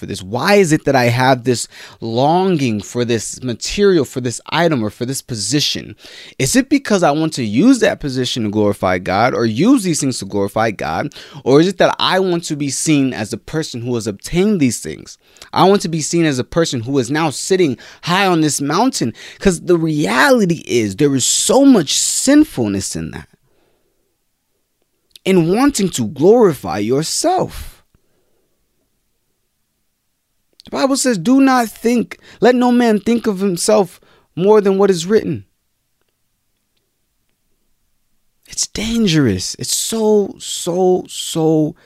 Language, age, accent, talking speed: English, 20-39, American, 155 wpm